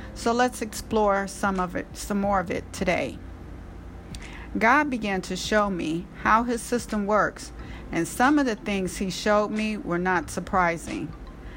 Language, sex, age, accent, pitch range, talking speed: English, female, 50-69, American, 175-215 Hz, 160 wpm